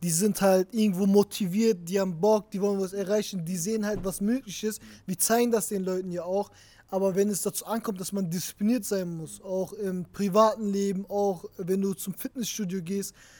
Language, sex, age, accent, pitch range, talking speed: German, male, 20-39, German, 185-215 Hz, 200 wpm